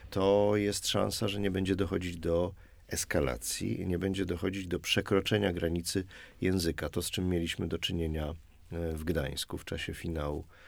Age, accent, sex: 40-59, native, male